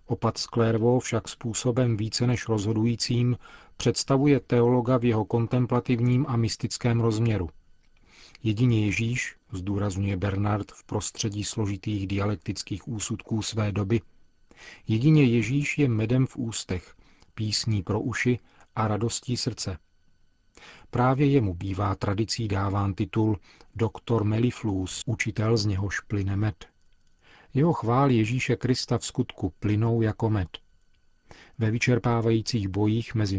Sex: male